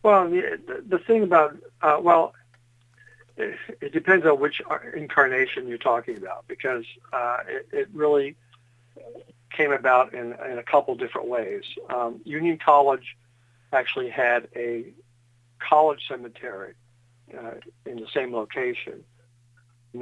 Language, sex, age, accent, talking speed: English, male, 60-79, American, 130 wpm